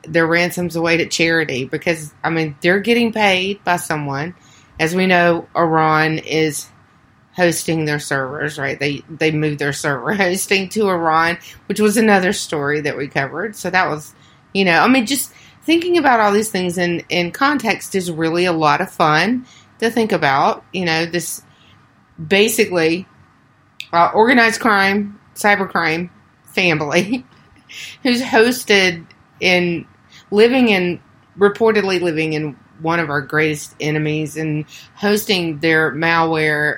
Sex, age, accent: female, 30-49, American